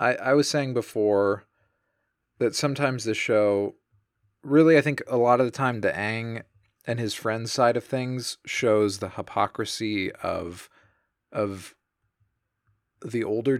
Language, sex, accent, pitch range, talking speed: English, male, American, 105-125 Hz, 135 wpm